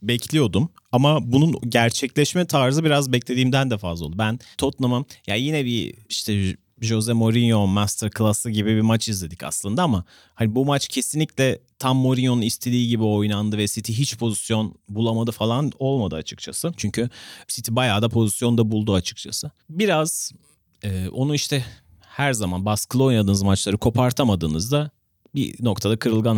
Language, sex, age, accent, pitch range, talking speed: Turkish, male, 40-59, native, 105-130 Hz, 140 wpm